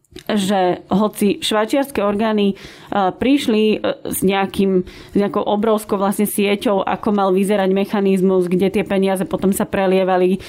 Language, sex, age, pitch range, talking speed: Slovak, female, 20-39, 190-225 Hz, 125 wpm